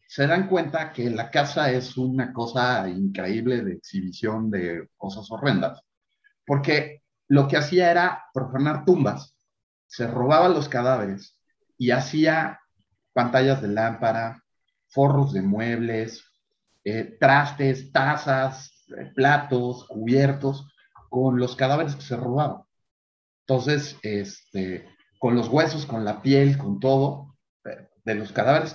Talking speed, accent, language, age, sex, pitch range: 125 wpm, Mexican, Spanish, 40-59, male, 120-155 Hz